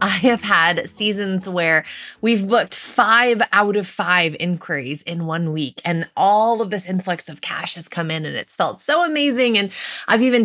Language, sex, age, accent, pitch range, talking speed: English, female, 20-39, American, 190-250 Hz, 190 wpm